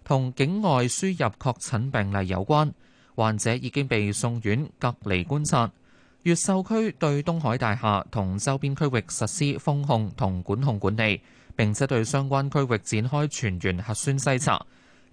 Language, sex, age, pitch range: Chinese, male, 20-39, 105-145 Hz